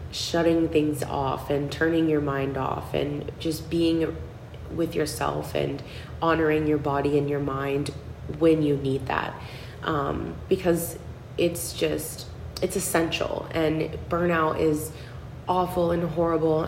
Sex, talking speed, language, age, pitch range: female, 130 wpm, English, 20-39, 145-165 Hz